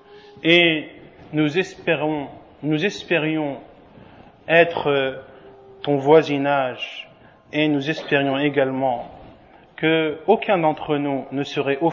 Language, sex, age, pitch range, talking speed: French, male, 40-59, 145-185 Hz, 75 wpm